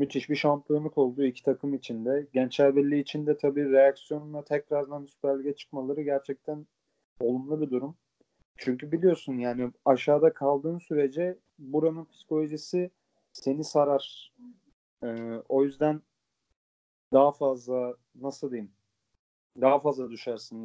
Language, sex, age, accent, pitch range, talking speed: Turkish, male, 30-49, native, 125-150 Hz, 120 wpm